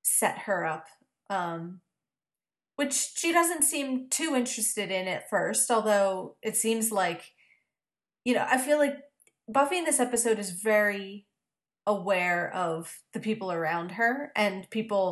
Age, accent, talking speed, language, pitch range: 30-49, American, 145 wpm, English, 185-225 Hz